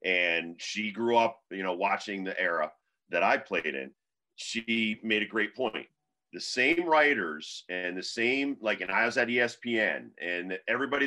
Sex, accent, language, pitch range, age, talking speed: male, American, English, 100-120 Hz, 40-59, 175 wpm